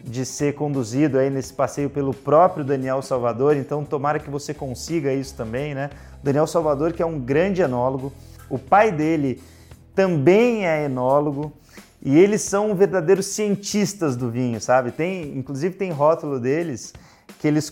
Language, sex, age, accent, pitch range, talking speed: Portuguese, male, 30-49, Brazilian, 140-180 Hz, 150 wpm